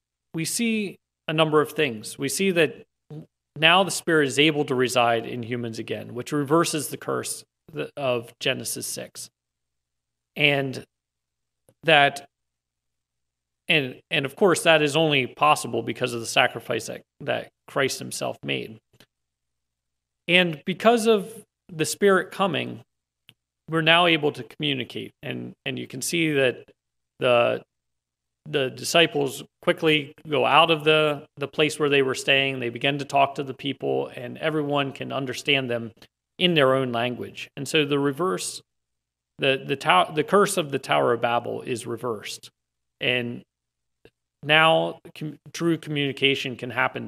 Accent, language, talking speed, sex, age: American, English, 145 wpm, male, 40-59